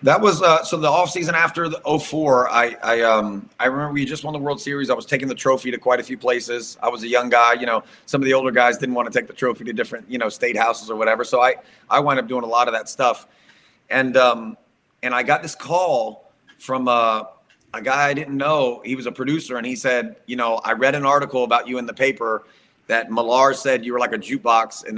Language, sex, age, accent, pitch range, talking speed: English, male, 30-49, American, 115-135 Hz, 265 wpm